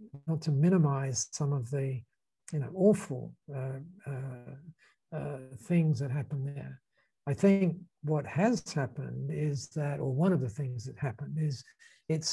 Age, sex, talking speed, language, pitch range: 60-79, male, 155 wpm, English, 140-165 Hz